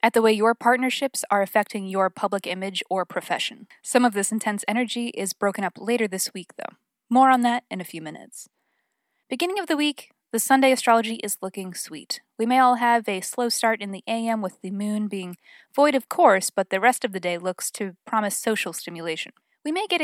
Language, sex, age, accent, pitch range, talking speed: English, female, 20-39, American, 190-240 Hz, 215 wpm